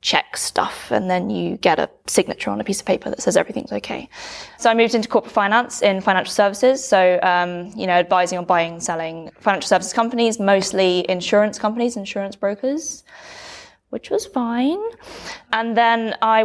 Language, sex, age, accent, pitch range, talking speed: English, female, 20-39, British, 180-220 Hz, 175 wpm